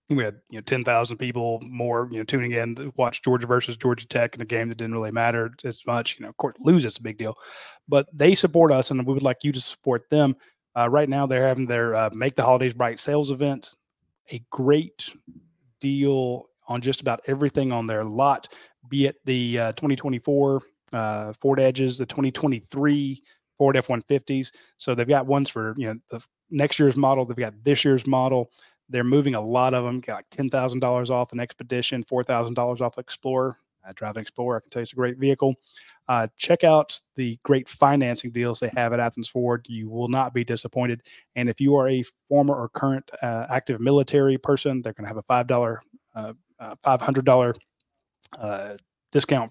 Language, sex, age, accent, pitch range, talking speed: English, male, 30-49, American, 120-140 Hz, 195 wpm